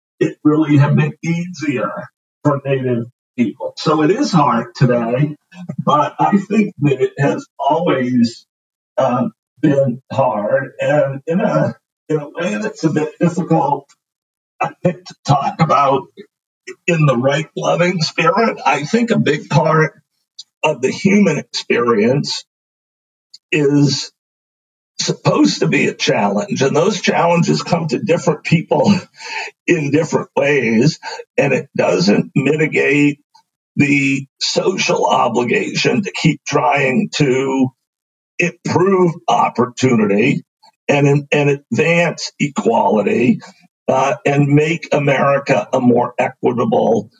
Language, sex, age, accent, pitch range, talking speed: English, male, 50-69, American, 140-175 Hz, 115 wpm